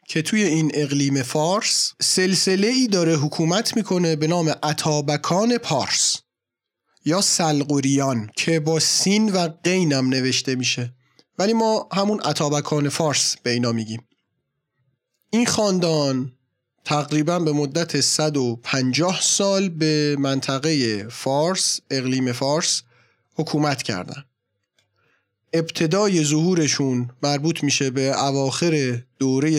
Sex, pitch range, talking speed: male, 140-170 Hz, 105 wpm